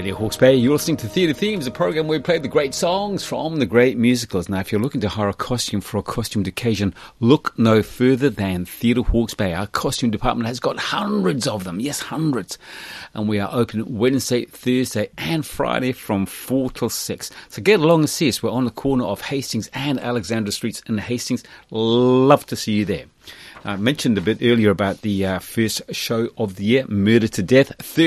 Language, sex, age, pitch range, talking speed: English, male, 40-59, 105-135 Hz, 210 wpm